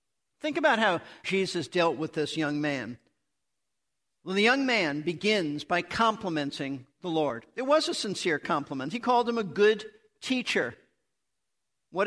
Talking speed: 155 wpm